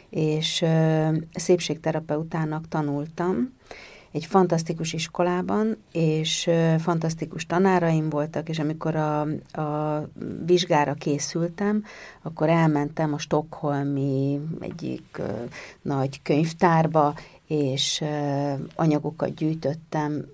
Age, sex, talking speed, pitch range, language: 50-69, female, 75 wpm, 150-180 Hz, Hungarian